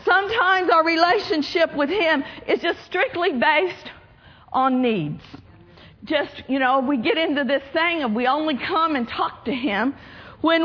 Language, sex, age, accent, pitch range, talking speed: English, female, 50-69, American, 275-345 Hz, 160 wpm